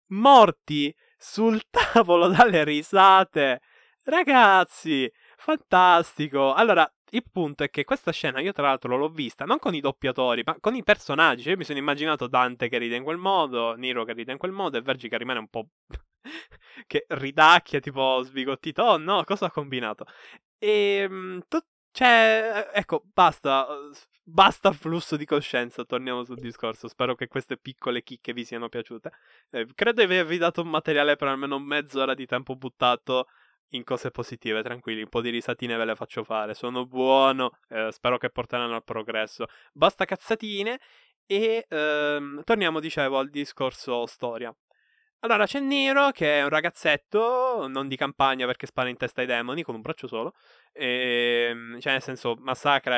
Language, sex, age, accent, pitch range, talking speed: Italian, male, 20-39, native, 125-175 Hz, 165 wpm